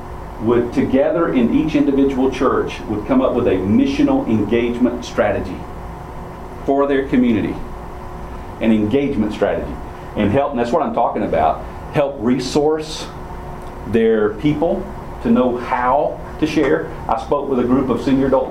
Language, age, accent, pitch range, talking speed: English, 40-59, American, 105-140 Hz, 145 wpm